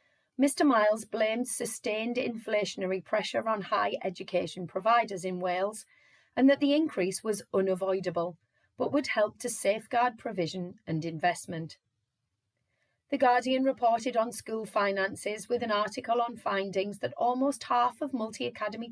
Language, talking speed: English, 135 wpm